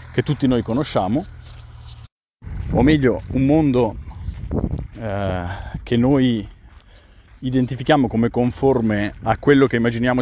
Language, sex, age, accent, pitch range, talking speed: Italian, male, 40-59, native, 95-145 Hz, 105 wpm